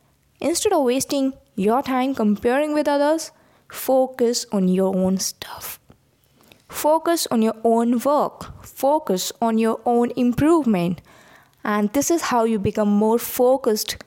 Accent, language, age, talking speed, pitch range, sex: Indian, English, 20-39, 130 wpm, 215-285 Hz, female